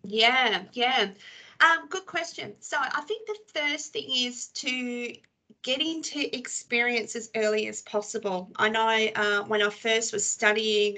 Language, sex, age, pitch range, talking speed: English, female, 30-49, 205-245 Hz, 155 wpm